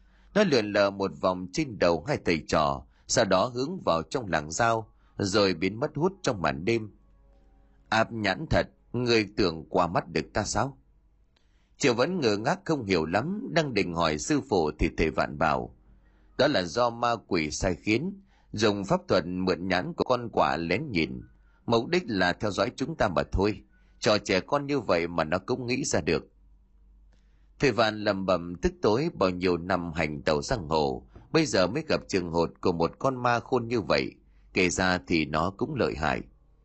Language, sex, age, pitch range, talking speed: Vietnamese, male, 30-49, 80-120 Hz, 195 wpm